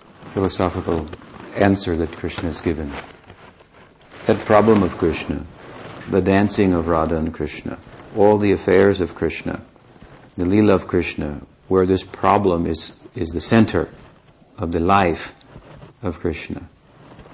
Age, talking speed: 60-79, 130 wpm